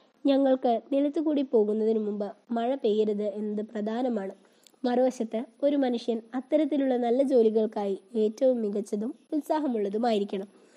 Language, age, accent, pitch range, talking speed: Malayalam, 20-39, native, 210-250 Hz, 95 wpm